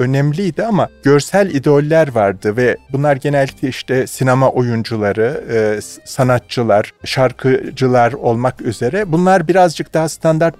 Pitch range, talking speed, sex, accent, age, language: 130-165 Hz, 110 wpm, male, native, 40-59, Turkish